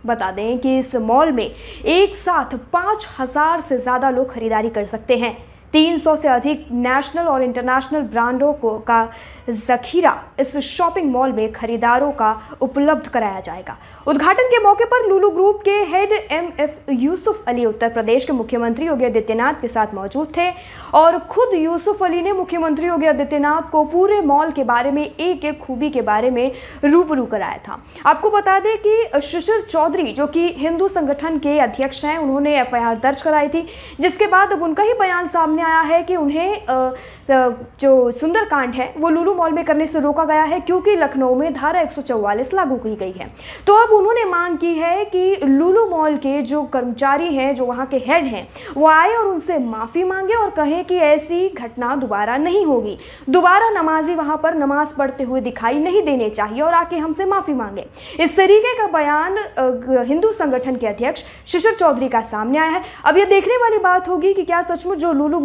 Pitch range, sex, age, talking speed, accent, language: 260-350 Hz, female, 20-39, 150 wpm, native, Hindi